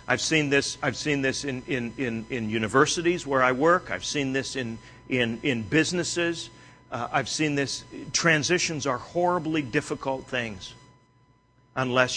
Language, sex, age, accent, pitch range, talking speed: English, male, 50-69, American, 125-145 Hz, 155 wpm